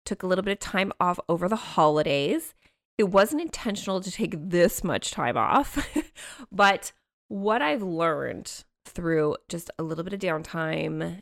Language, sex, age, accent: English, female, 20-39, American